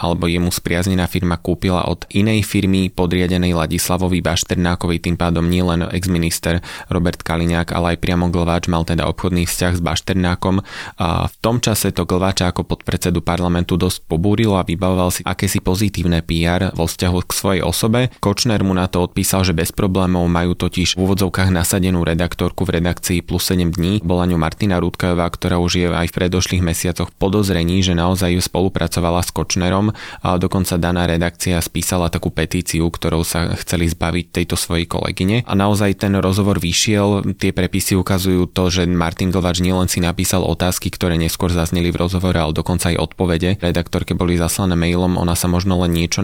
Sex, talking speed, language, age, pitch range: male, 175 wpm, Slovak, 20-39, 85-95 Hz